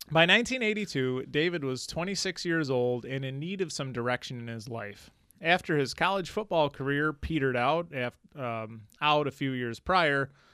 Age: 30-49